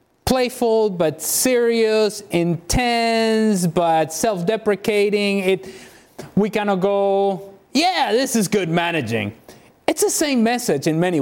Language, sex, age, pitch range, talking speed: English, male, 30-49, 155-210 Hz, 120 wpm